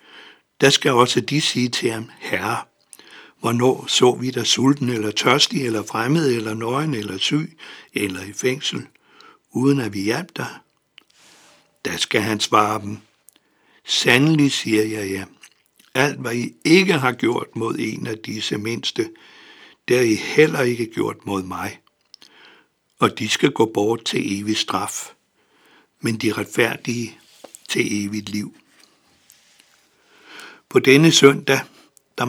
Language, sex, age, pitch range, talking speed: Danish, male, 60-79, 110-135 Hz, 140 wpm